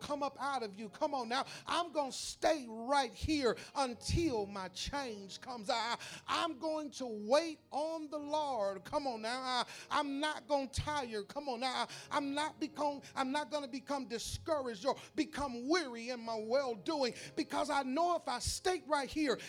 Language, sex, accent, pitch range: English, male, American, 250-310 Hz